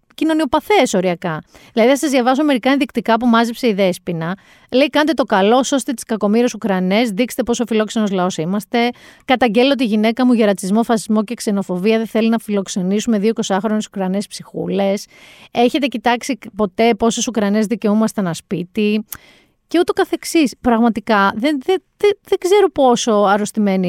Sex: female